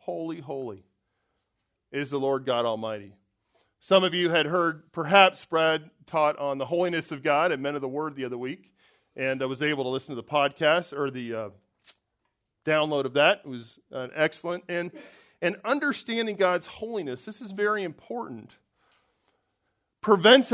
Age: 40-59